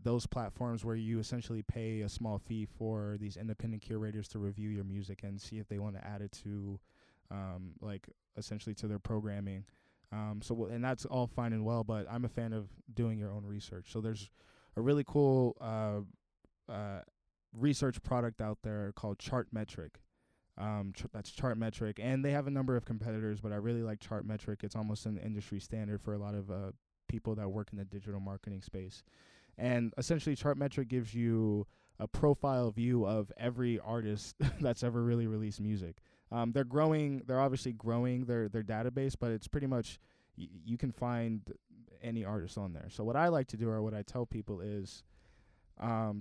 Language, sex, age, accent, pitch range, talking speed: English, male, 20-39, American, 100-120 Hz, 190 wpm